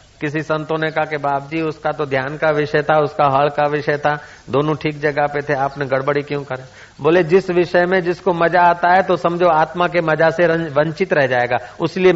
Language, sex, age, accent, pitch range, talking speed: Hindi, male, 50-69, native, 135-185 Hz, 215 wpm